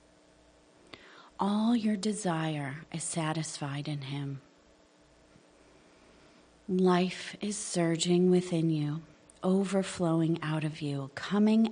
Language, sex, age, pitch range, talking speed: English, female, 40-59, 150-185 Hz, 85 wpm